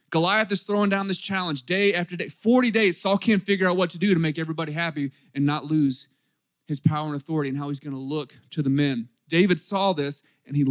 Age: 30-49